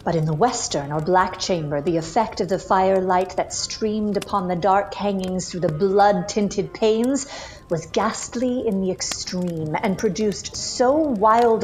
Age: 50-69